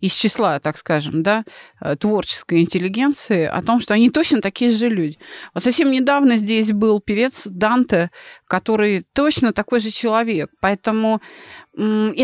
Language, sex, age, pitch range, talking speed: Russian, female, 30-49, 180-240 Hz, 135 wpm